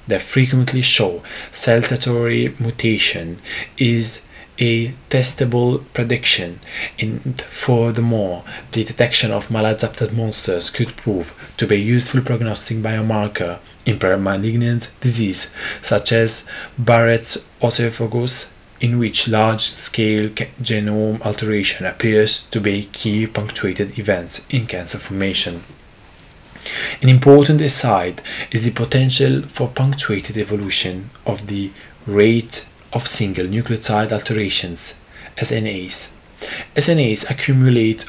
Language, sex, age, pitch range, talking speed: English, male, 20-39, 105-120 Hz, 100 wpm